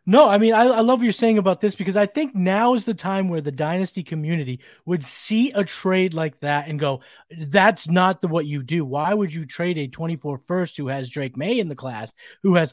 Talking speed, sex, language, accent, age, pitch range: 245 wpm, male, English, American, 30-49, 165-230 Hz